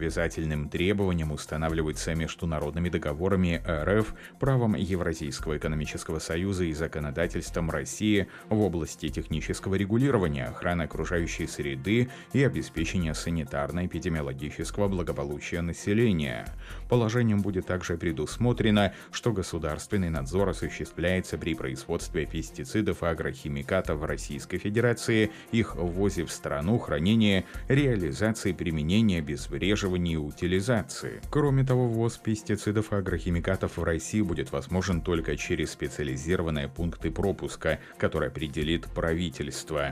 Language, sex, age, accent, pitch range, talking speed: Russian, male, 30-49, native, 80-100 Hz, 100 wpm